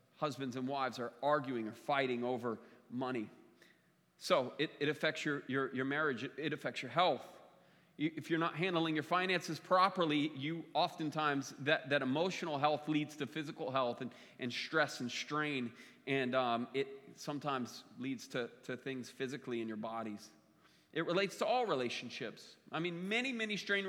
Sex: male